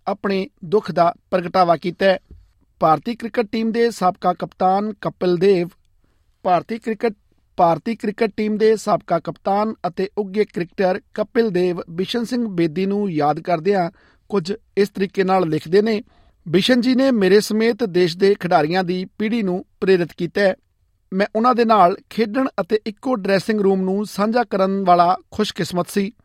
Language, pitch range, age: Punjabi, 180-220 Hz, 50-69